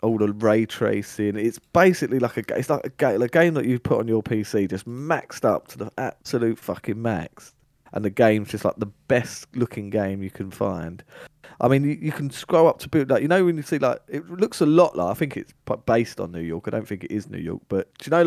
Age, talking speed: 20-39, 245 wpm